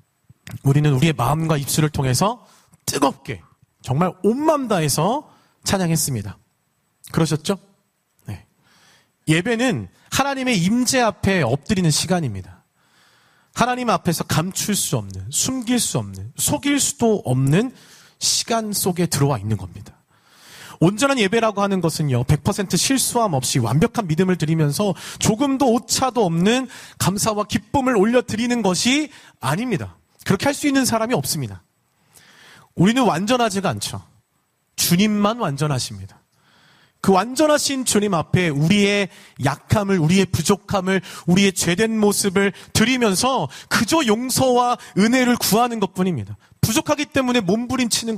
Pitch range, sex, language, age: 155-235 Hz, male, Korean, 40-59